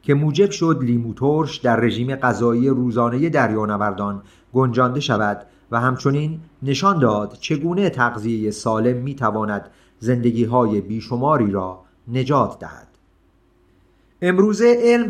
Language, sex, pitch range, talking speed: Persian, male, 115-140 Hz, 110 wpm